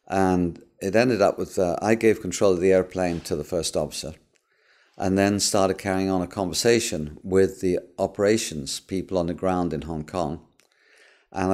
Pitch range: 90-110 Hz